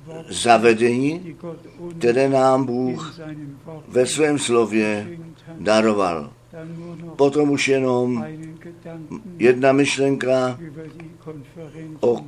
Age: 60-79